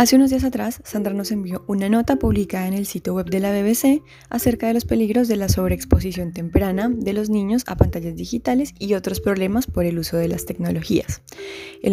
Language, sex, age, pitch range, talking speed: Spanish, female, 10-29, 175-220 Hz, 205 wpm